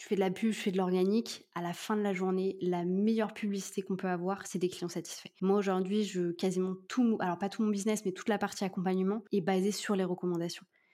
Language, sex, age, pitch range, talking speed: French, female, 20-39, 180-210 Hz, 245 wpm